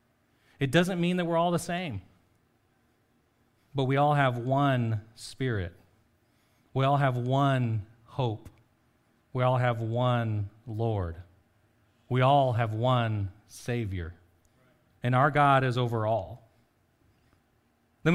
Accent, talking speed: American, 120 wpm